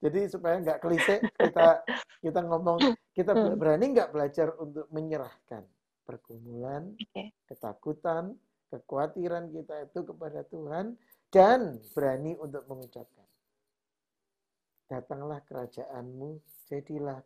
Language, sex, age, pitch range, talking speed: Indonesian, male, 50-69, 125-195 Hz, 95 wpm